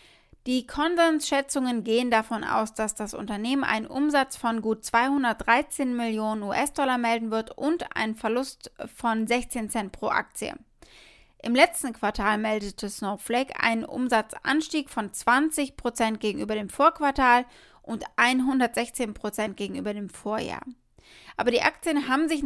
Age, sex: 20-39, female